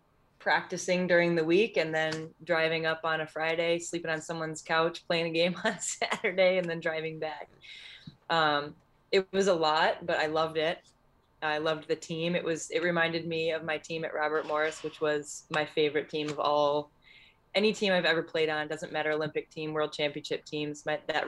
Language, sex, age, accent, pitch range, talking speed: English, female, 20-39, American, 150-165 Hz, 195 wpm